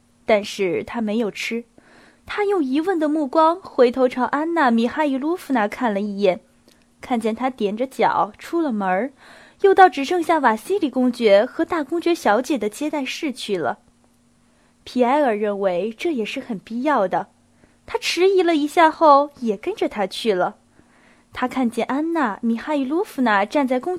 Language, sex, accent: Chinese, female, native